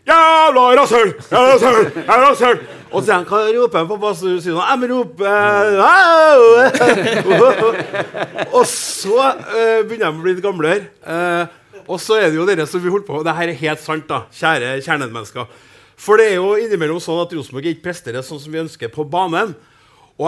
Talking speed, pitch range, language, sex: 170 wpm, 150-215 Hz, English, male